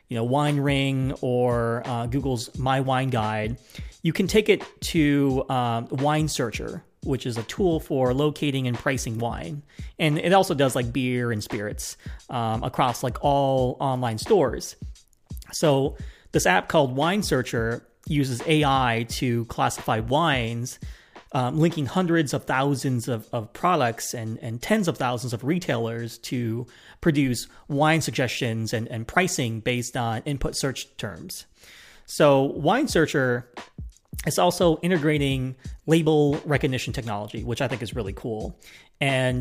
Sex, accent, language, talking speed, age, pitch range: male, American, English, 145 wpm, 30-49, 120-155 Hz